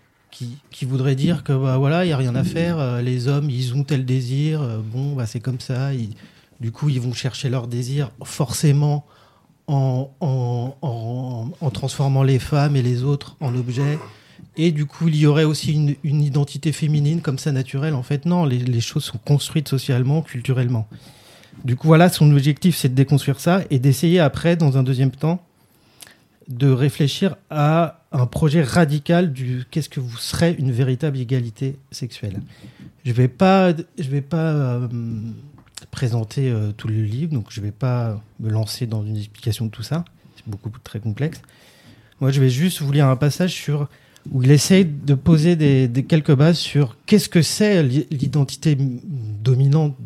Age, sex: 30-49, male